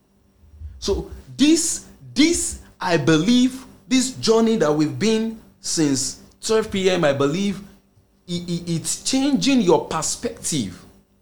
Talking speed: 110 wpm